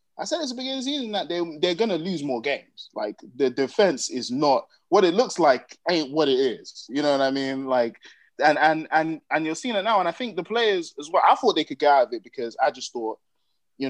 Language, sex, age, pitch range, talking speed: English, male, 20-39, 115-165 Hz, 270 wpm